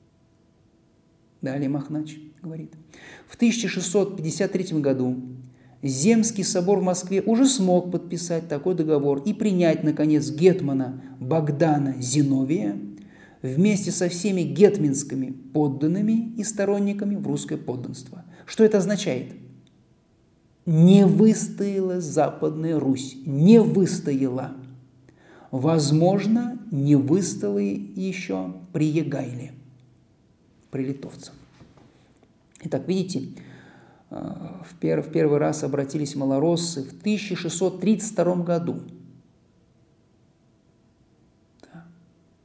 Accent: native